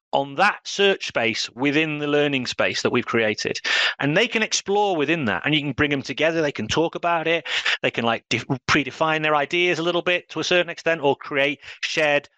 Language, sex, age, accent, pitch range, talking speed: English, male, 30-49, British, 130-175 Hz, 220 wpm